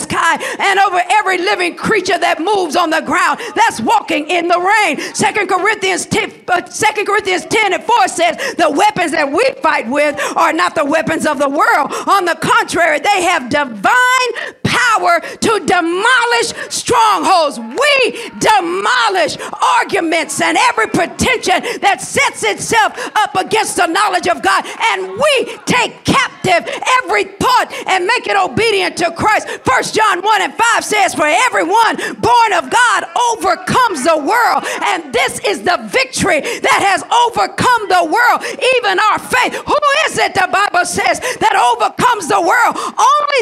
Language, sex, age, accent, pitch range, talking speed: English, female, 50-69, American, 350-450 Hz, 155 wpm